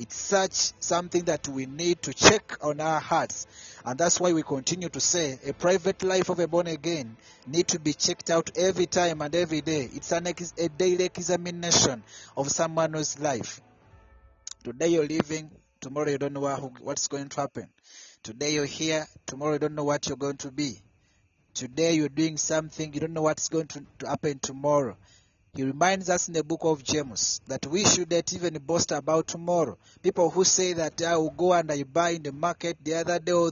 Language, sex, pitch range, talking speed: English, male, 145-175 Hz, 195 wpm